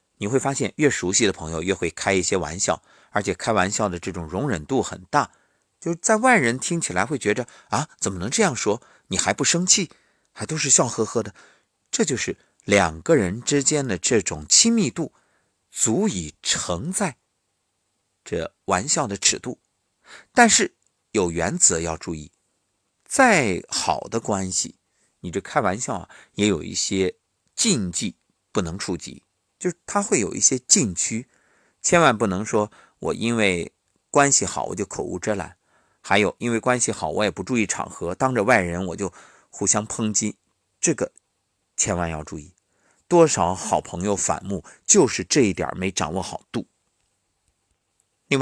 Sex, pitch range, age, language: male, 90-125 Hz, 50-69, Chinese